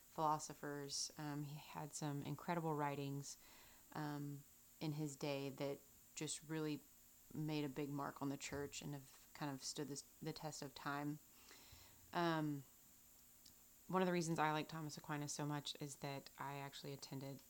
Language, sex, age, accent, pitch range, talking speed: English, female, 30-49, American, 140-155 Hz, 160 wpm